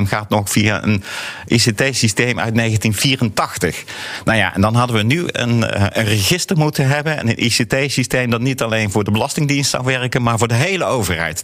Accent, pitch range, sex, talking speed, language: Dutch, 100-125 Hz, male, 185 wpm, Dutch